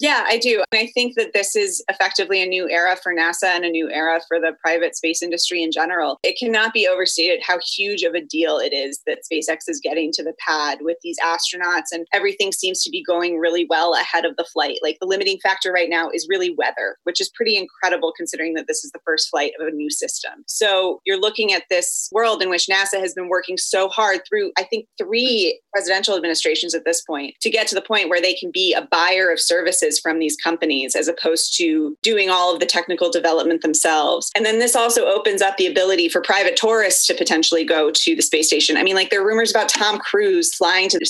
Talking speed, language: 235 wpm, English